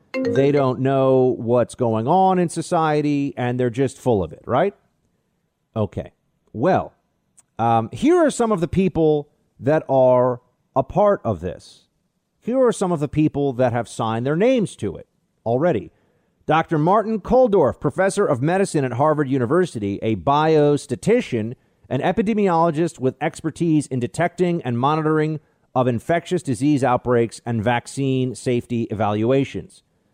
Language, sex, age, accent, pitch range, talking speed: English, male, 40-59, American, 125-170 Hz, 140 wpm